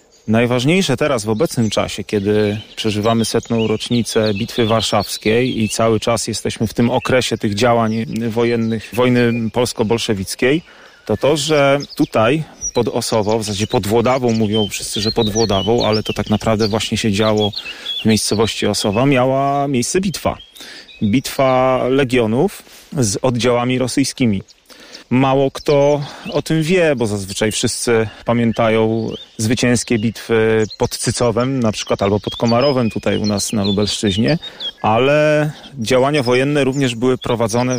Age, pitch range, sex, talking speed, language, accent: 30-49, 110-125 Hz, male, 135 wpm, Polish, native